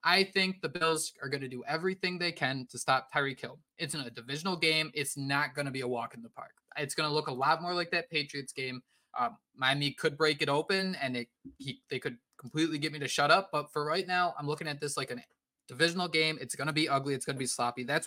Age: 20-39